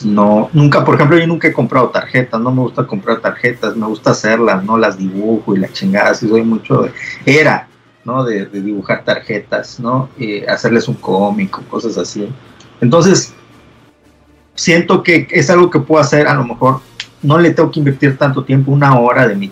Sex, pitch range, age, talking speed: male, 110-145 Hz, 40-59, 190 wpm